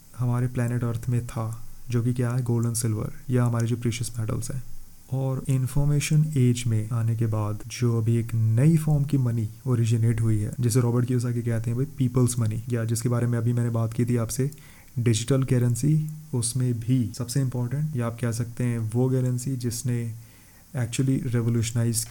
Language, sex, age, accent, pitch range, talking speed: Hindi, male, 30-49, native, 115-130 Hz, 185 wpm